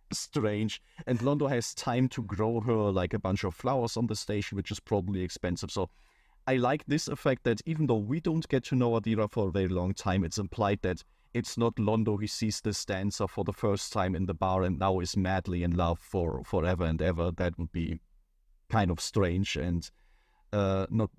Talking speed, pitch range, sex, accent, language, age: 210 wpm, 95-120 Hz, male, German, English, 30-49